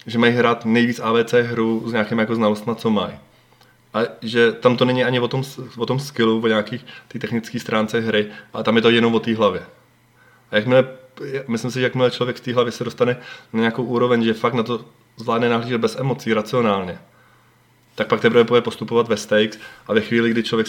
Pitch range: 105-120 Hz